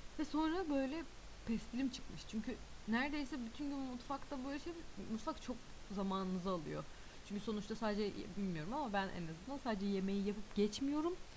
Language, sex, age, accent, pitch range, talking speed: Turkish, female, 30-49, native, 185-245 Hz, 150 wpm